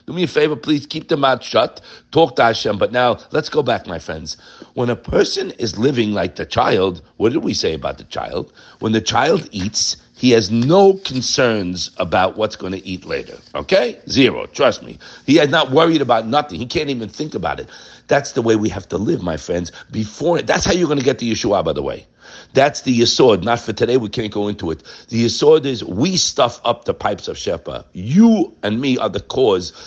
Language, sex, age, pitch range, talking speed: English, male, 60-79, 110-170 Hz, 225 wpm